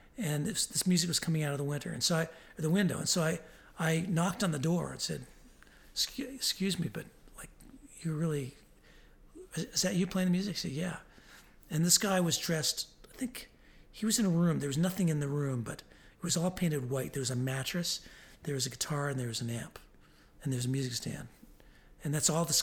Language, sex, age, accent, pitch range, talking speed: English, male, 40-59, American, 145-190 Hz, 230 wpm